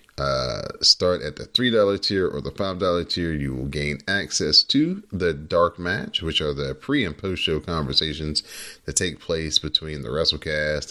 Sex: male